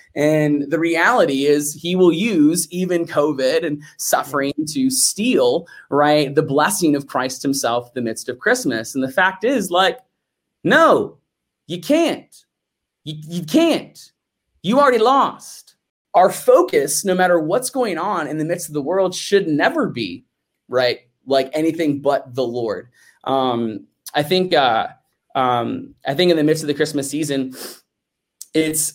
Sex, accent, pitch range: male, American, 130-170 Hz